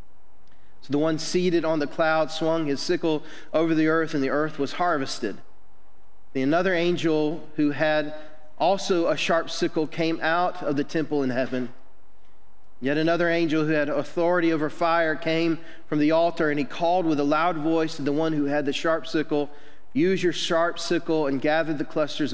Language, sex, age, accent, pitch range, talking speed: English, male, 40-59, American, 135-165 Hz, 185 wpm